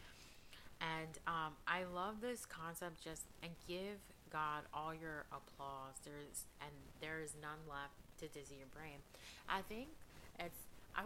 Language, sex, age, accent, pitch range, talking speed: English, female, 30-49, American, 140-165 Hz, 150 wpm